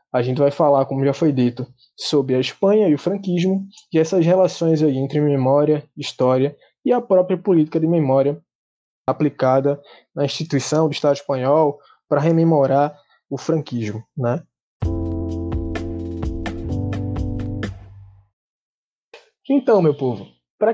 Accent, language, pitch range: Brazilian, Portuguese, 135-185 Hz